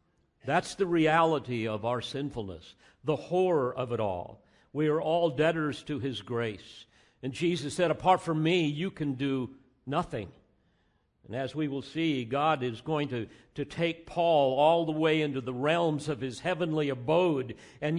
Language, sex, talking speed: English, male, 170 wpm